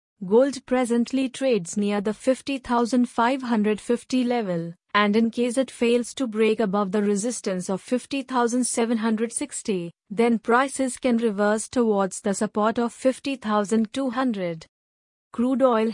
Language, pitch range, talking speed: English, 205-245 Hz, 115 wpm